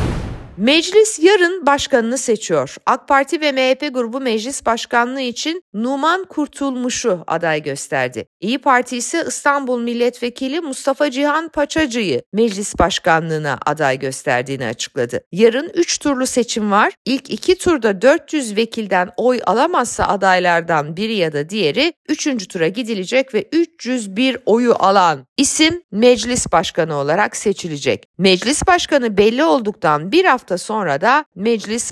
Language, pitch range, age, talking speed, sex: Turkish, 180-275 Hz, 50-69, 125 wpm, female